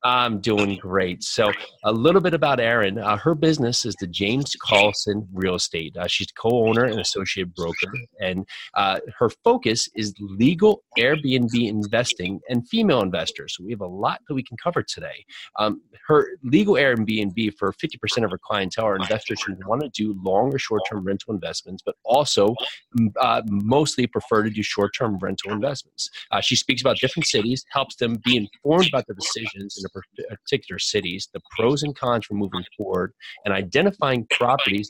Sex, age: male, 30-49